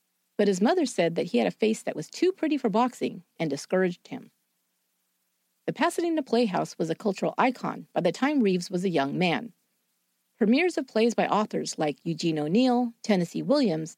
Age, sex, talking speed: 40-59, female, 185 wpm